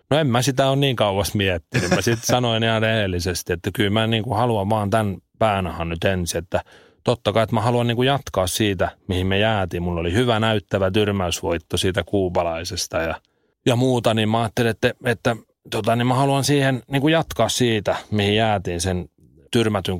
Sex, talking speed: male, 195 wpm